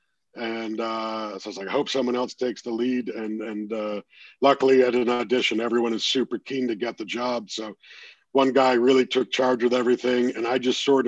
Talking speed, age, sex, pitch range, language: 215 wpm, 50-69, male, 115-130 Hz, English